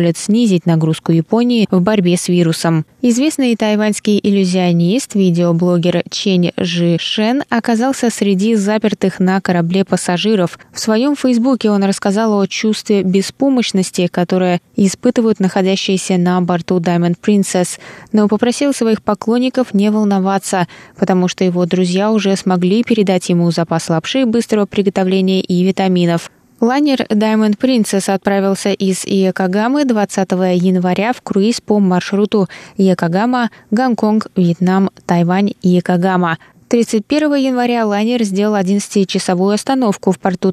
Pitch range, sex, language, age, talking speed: 180-215 Hz, female, Russian, 20-39, 120 wpm